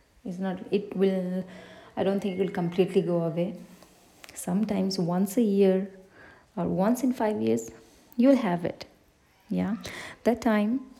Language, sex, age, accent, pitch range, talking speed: English, female, 30-49, Indian, 185-230 Hz, 145 wpm